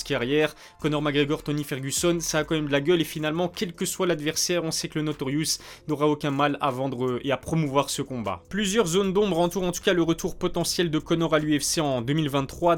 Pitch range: 145-180 Hz